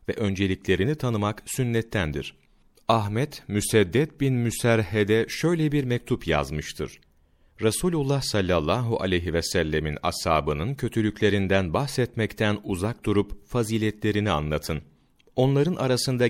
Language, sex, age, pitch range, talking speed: Turkish, male, 40-59, 95-120 Hz, 95 wpm